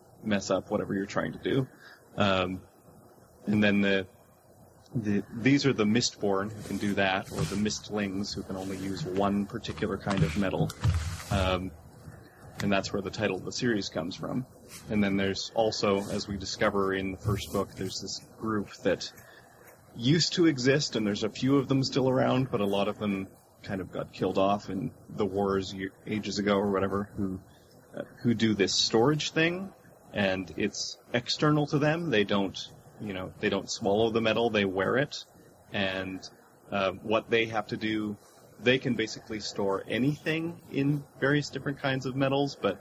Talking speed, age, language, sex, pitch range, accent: 180 wpm, 30-49, English, male, 100-120 Hz, American